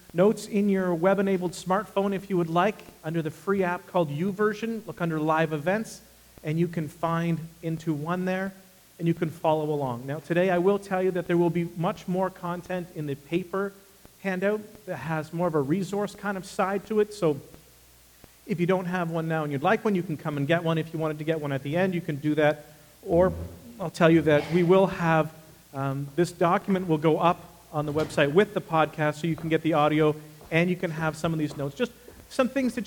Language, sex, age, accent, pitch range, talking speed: English, male, 40-59, American, 155-195 Hz, 230 wpm